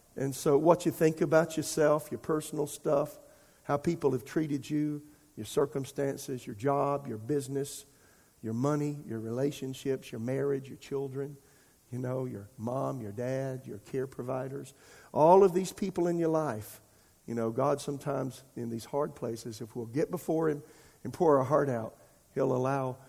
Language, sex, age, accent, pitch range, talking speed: English, male, 50-69, American, 125-150 Hz, 170 wpm